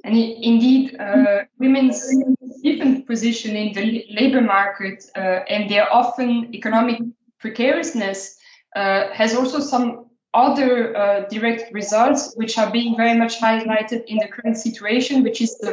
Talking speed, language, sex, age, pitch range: 140 wpm, English, female, 20-39, 210-255 Hz